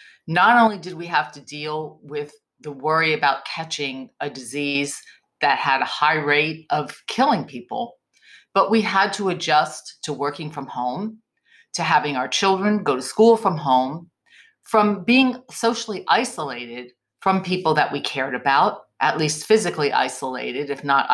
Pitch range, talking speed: 145-210 Hz, 160 wpm